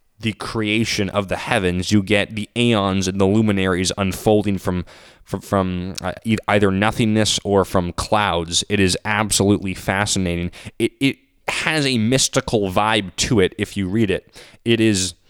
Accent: American